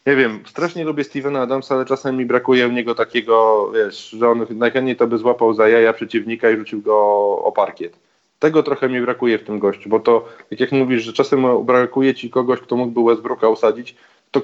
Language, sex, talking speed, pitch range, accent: Polish, male, 205 wpm, 115-135 Hz, native